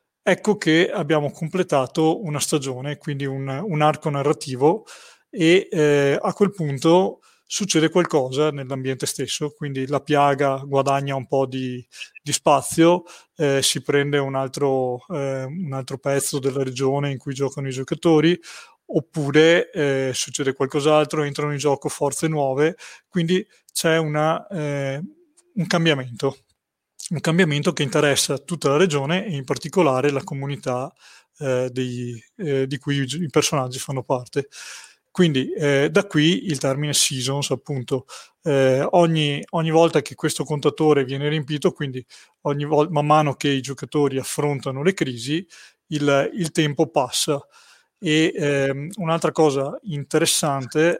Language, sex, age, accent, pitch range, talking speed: Italian, male, 30-49, native, 135-160 Hz, 140 wpm